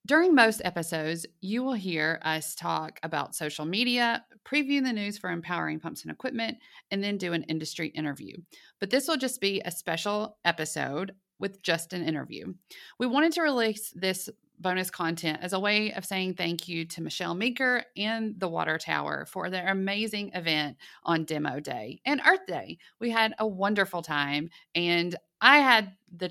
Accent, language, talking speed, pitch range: American, English, 175 wpm, 160-210 Hz